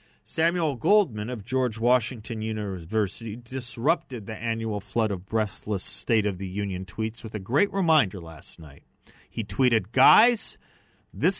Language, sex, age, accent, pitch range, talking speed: English, male, 40-59, American, 105-140 Hz, 140 wpm